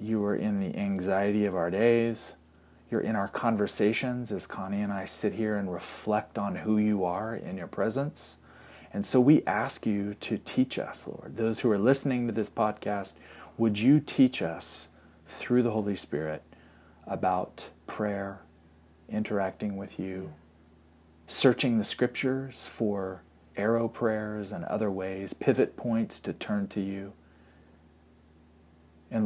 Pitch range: 80-110 Hz